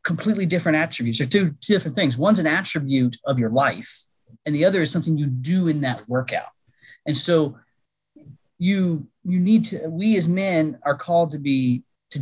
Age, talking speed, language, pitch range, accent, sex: 30-49, 180 wpm, English, 135-185 Hz, American, male